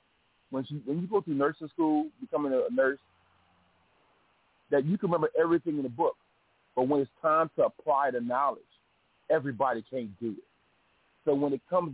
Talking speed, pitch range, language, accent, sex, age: 170 wpm, 130-175 Hz, English, American, male, 30-49